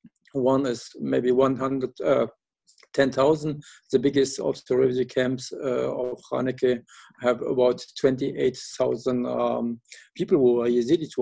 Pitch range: 130-165 Hz